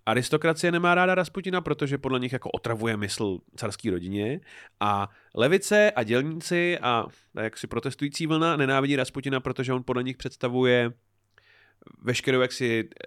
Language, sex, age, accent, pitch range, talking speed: Czech, male, 30-49, native, 95-130 Hz, 135 wpm